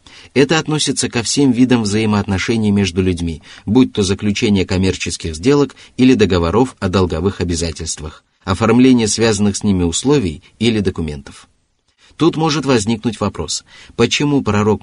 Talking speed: 125 wpm